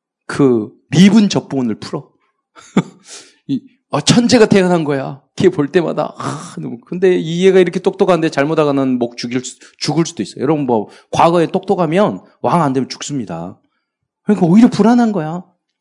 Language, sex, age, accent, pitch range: Korean, male, 40-59, native, 130-205 Hz